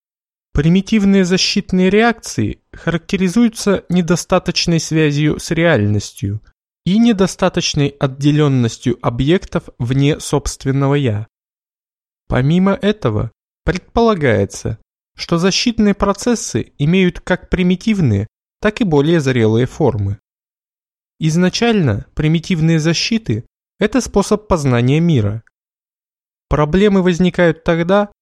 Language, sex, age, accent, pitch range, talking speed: Russian, male, 20-39, native, 130-190 Hz, 85 wpm